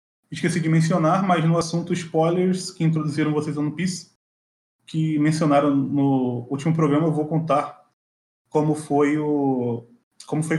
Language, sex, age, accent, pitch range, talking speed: Portuguese, male, 20-39, Brazilian, 135-170 Hz, 140 wpm